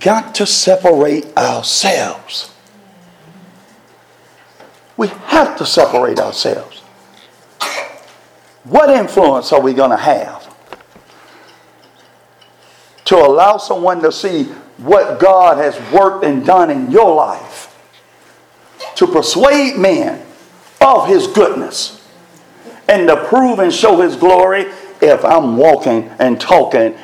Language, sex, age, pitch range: English, male, 50-69, 175-225 Hz